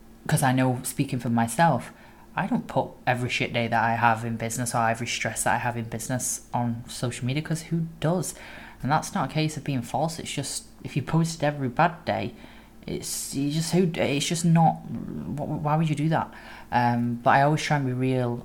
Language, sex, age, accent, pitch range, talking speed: English, female, 10-29, British, 115-130 Hz, 215 wpm